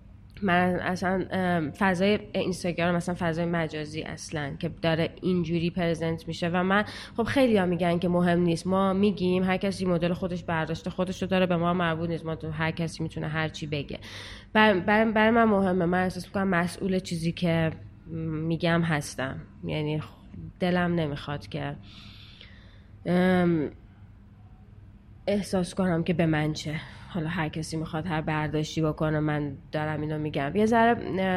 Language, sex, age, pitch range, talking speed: Persian, female, 20-39, 155-190 Hz, 145 wpm